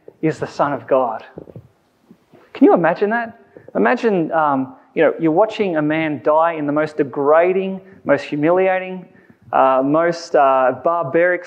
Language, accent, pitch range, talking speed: English, Australian, 160-210 Hz, 145 wpm